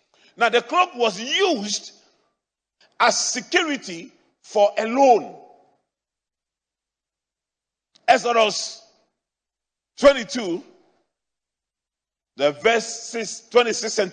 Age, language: 50-69, English